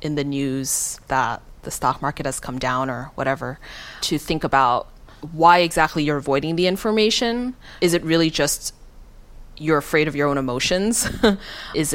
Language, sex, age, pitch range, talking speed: English, female, 30-49, 140-175 Hz, 160 wpm